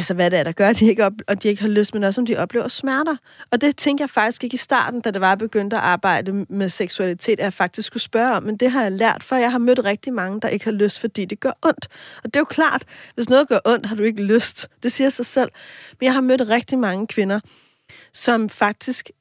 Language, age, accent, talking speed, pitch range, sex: Danish, 30-49, native, 280 wpm, 205-250 Hz, female